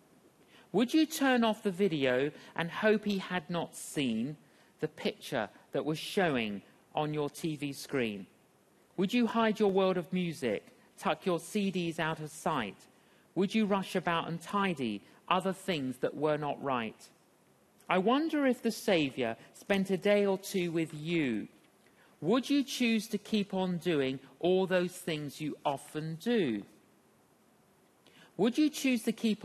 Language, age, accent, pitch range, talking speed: English, 50-69, British, 155-205 Hz, 155 wpm